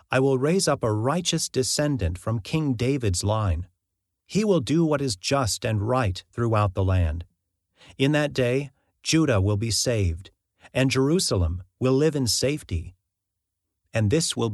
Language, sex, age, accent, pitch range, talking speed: English, male, 40-59, American, 95-135 Hz, 155 wpm